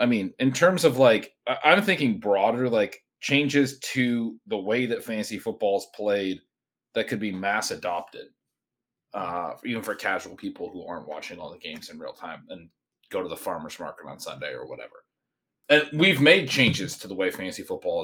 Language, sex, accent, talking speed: English, male, American, 190 wpm